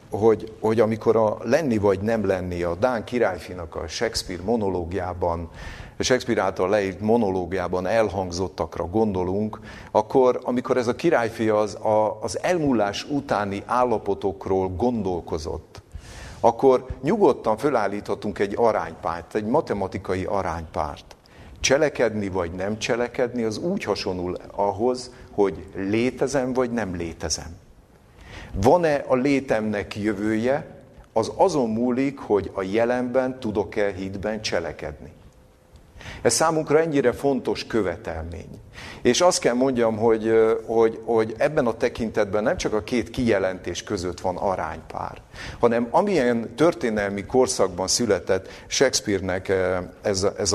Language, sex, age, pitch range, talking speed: Hungarian, male, 50-69, 95-120 Hz, 115 wpm